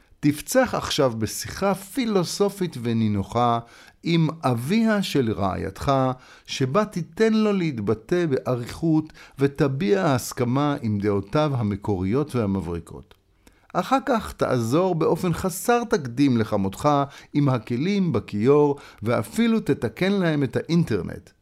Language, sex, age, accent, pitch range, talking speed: Hebrew, male, 50-69, native, 105-170 Hz, 100 wpm